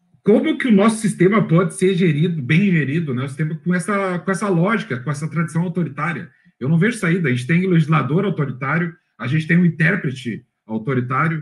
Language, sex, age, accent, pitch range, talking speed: Portuguese, male, 40-59, Brazilian, 145-195 Hz, 200 wpm